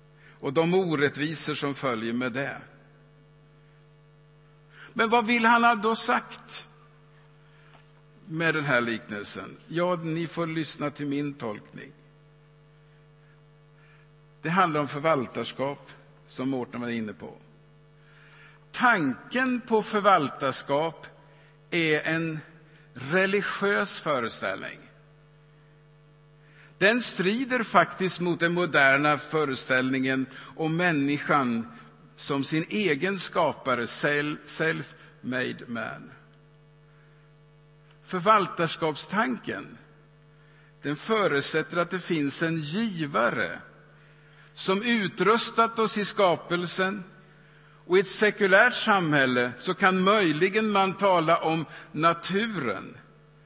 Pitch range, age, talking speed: 150-180 Hz, 50-69, 90 wpm